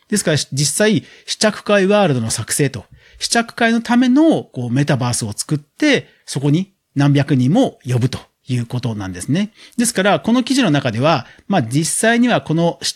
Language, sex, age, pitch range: Japanese, male, 40-59, 135-205 Hz